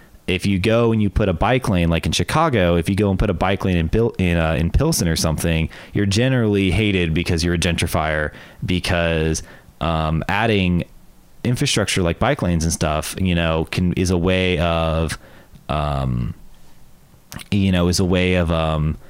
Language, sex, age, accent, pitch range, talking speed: English, male, 30-49, American, 80-95 Hz, 190 wpm